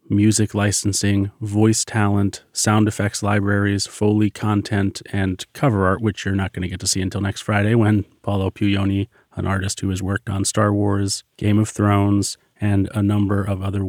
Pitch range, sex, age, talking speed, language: 100-110 Hz, male, 30-49, 180 wpm, English